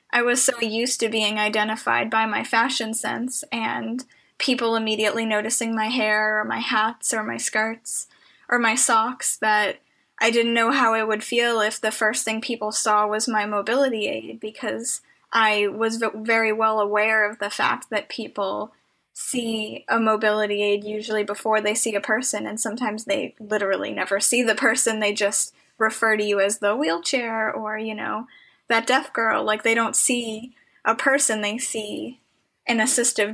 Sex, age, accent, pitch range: female, 10-29, American, 215-235 Hz